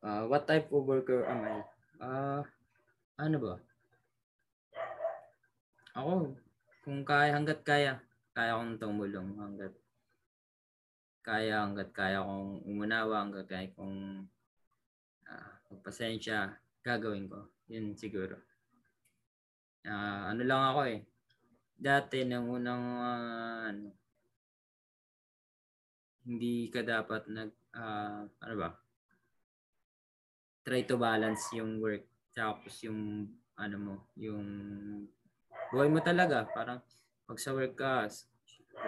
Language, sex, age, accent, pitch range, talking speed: Filipino, male, 20-39, native, 105-125 Hz, 100 wpm